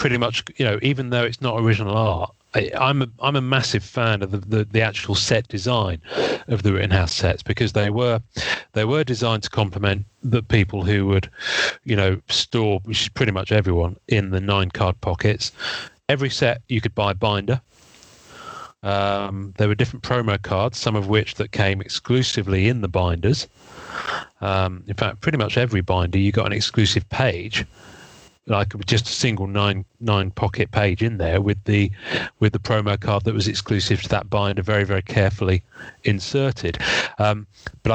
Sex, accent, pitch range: male, British, 100-125 Hz